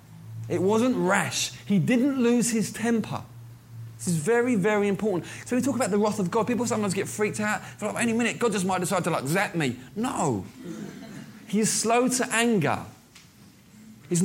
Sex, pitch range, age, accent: male, 145-220 Hz, 20-39, British